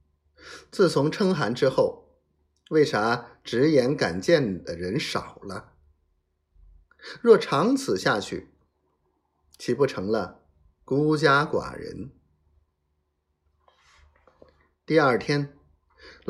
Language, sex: Chinese, male